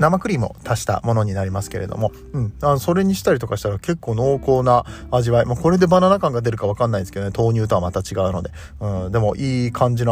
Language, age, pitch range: Japanese, 40-59, 105-135 Hz